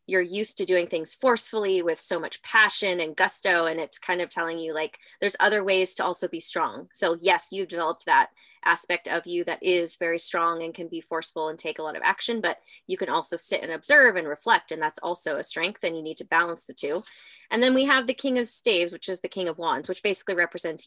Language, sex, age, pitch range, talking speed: English, female, 20-39, 165-215 Hz, 245 wpm